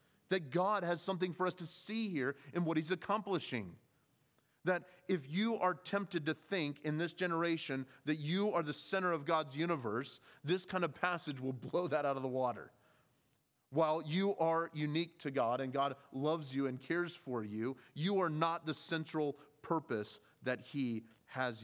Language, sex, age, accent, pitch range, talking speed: English, male, 30-49, American, 140-190 Hz, 180 wpm